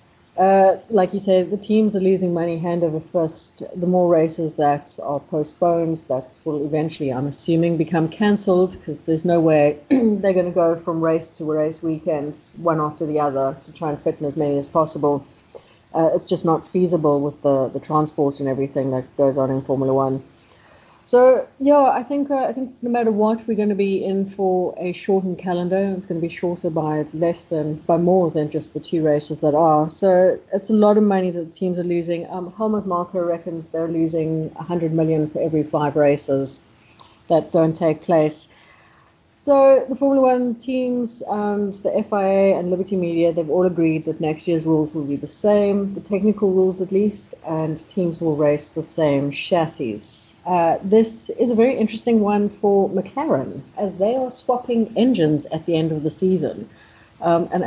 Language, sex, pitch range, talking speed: English, female, 155-195 Hz, 195 wpm